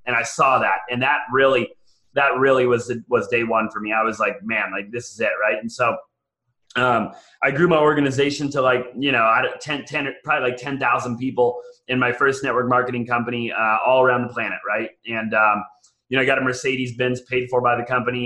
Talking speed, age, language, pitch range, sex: 220 wpm, 30-49, English, 120-140 Hz, male